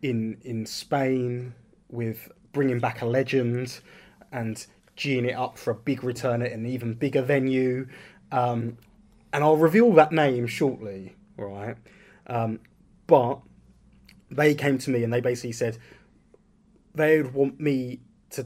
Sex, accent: male, British